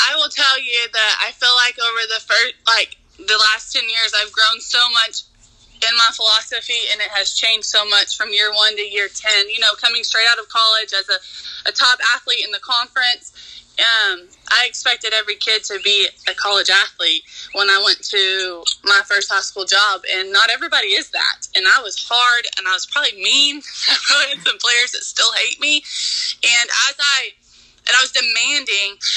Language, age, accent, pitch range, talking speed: English, 20-39, American, 200-240 Hz, 200 wpm